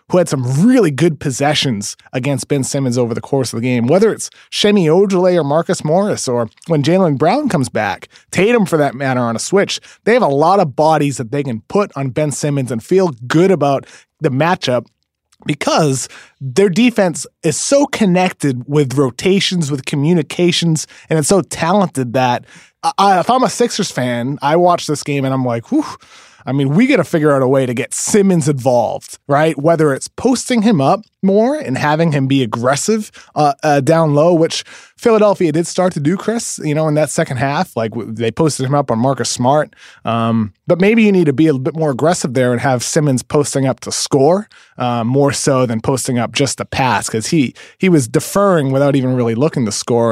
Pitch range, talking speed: 130-175 Hz, 205 wpm